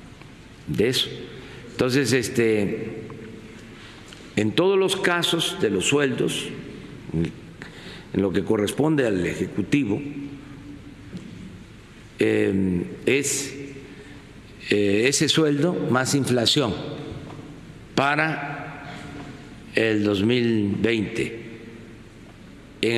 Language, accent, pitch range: Spanish, Mexican, 110-145 Hz